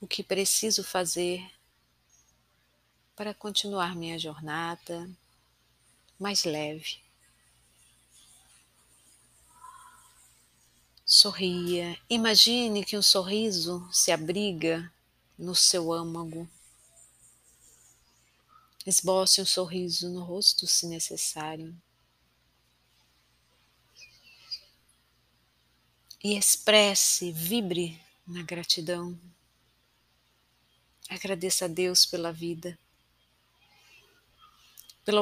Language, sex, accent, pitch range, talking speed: Portuguese, female, Brazilian, 115-190 Hz, 65 wpm